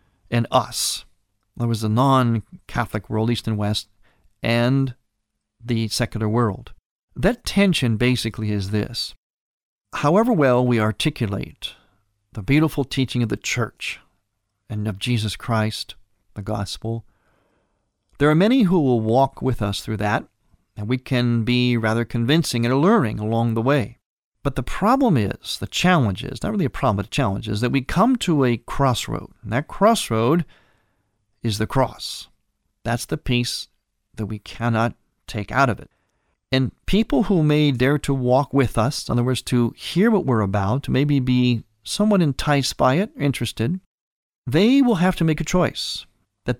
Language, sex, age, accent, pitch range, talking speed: English, male, 50-69, American, 110-145 Hz, 160 wpm